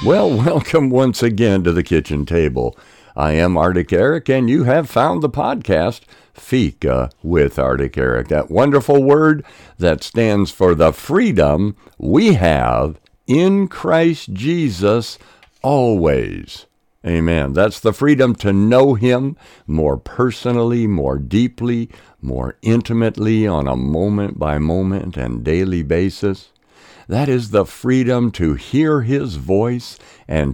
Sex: male